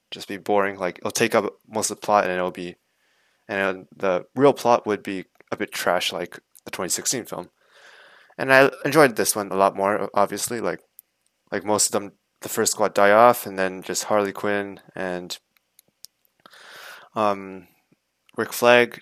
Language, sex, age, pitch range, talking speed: English, male, 20-39, 100-125 Hz, 175 wpm